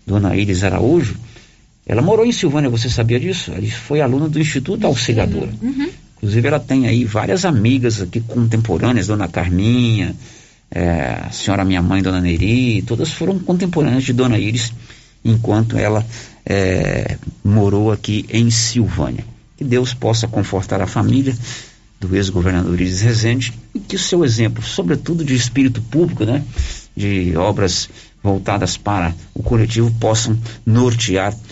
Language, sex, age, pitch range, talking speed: Portuguese, male, 50-69, 100-145 Hz, 135 wpm